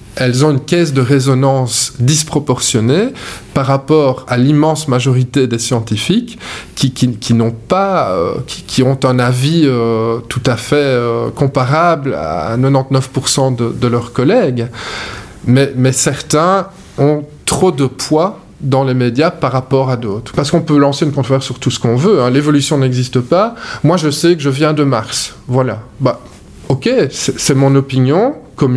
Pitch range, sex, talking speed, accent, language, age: 125-150 Hz, male, 170 wpm, French, French, 20-39